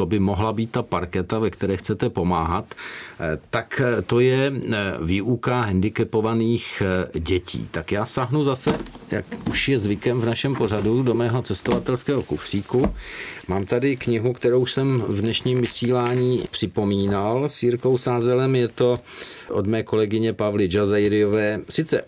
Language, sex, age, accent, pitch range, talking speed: Czech, male, 50-69, native, 100-125 Hz, 135 wpm